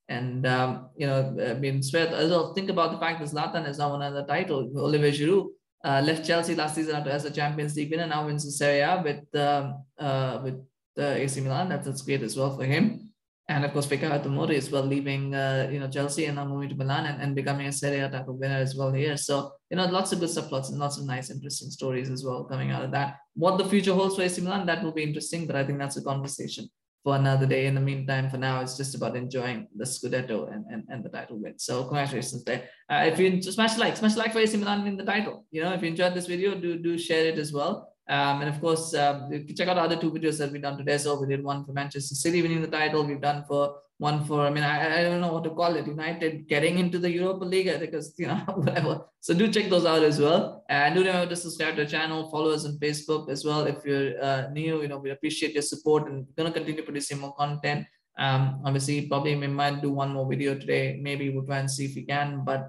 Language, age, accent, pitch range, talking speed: English, 20-39, Indian, 140-165 Hz, 260 wpm